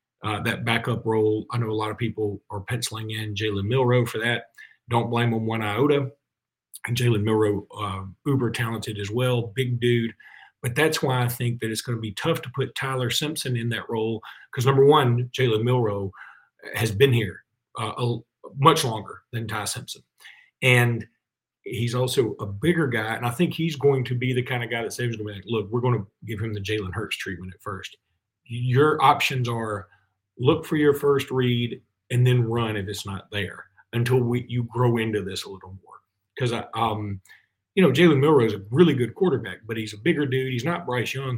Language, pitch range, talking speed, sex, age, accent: English, 110-130 Hz, 205 wpm, male, 40-59, American